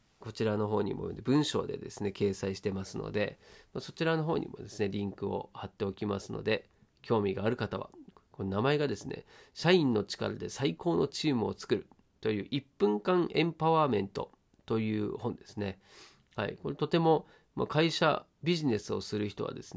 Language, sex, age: Japanese, male, 40-59